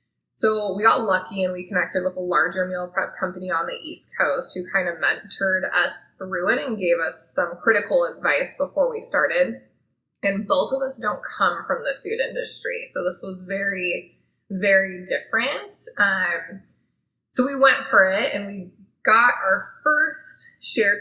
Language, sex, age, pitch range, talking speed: English, female, 20-39, 190-275 Hz, 175 wpm